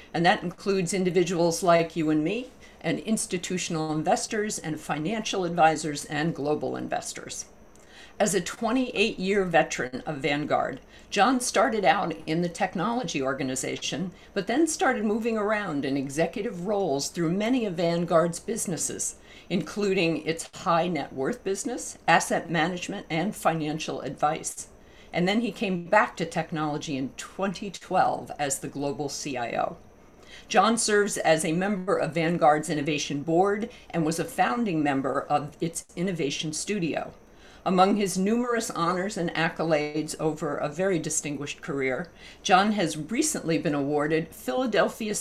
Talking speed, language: 135 wpm, English